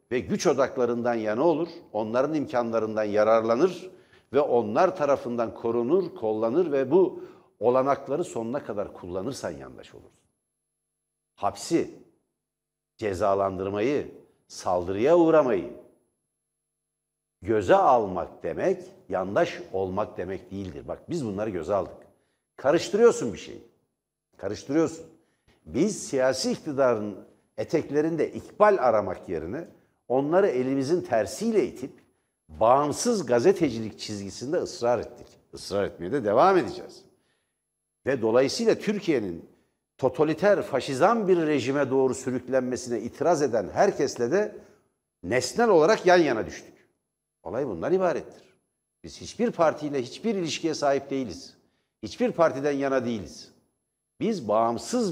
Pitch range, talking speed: 115-180 Hz, 105 wpm